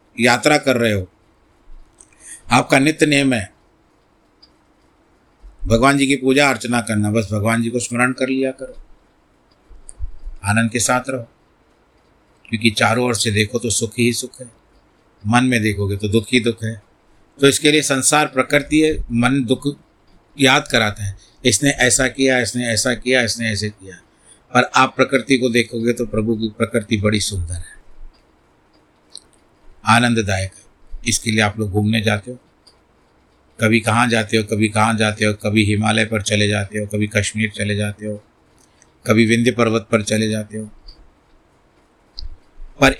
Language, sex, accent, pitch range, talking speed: Hindi, male, native, 105-125 Hz, 155 wpm